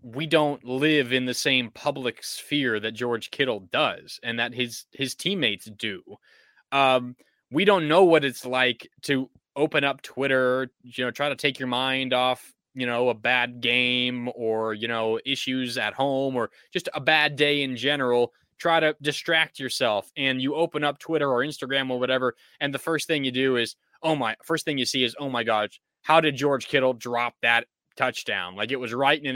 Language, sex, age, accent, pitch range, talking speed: English, male, 20-39, American, 125-150 Hz, 200 wpm